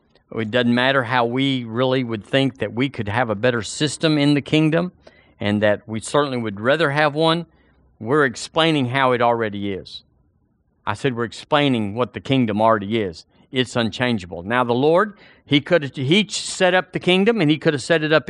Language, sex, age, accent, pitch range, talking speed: English, male, 50-69, American, 120-160 Hz, 200 wpm